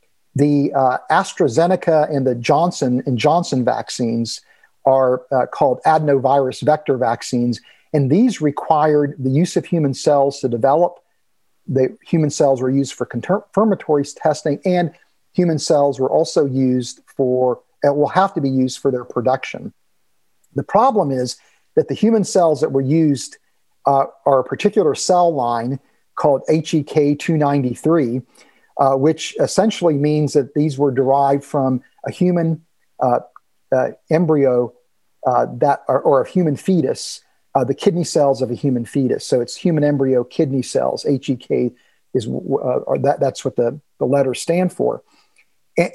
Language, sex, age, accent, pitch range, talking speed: English, male, 50-69, American, 130-165 Hz, 150 wpm